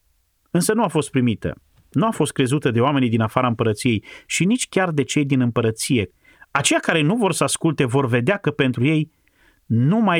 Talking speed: 200 wpm